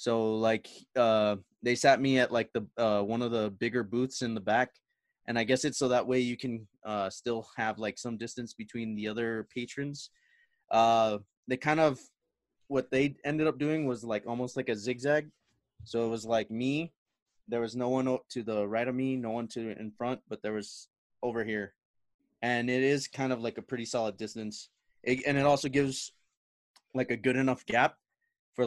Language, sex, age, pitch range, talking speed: English, male, 20-39, 110-130 Hz, 205 wpm